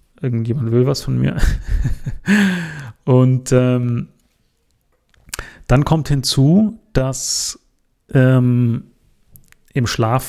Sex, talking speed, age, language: male, 80 wpm, 30-49, German